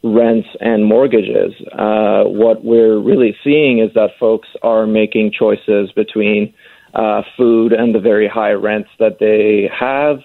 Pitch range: 110-120 Hz